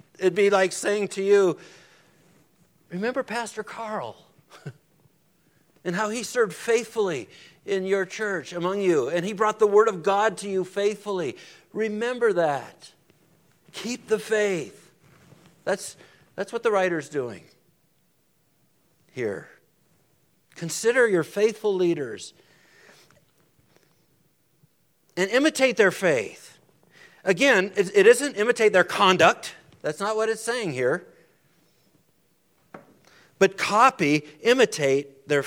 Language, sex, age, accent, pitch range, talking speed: English, male, 60-79, American, 145-215 Hz, 110 wpm